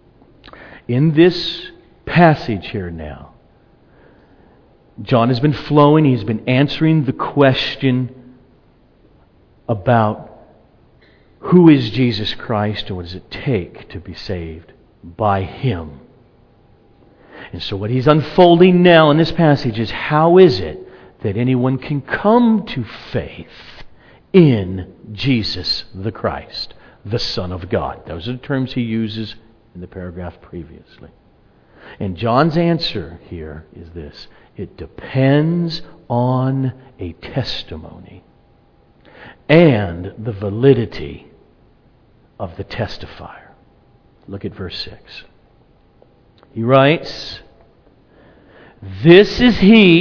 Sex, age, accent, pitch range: male, 50-69, American, 100-155 Hz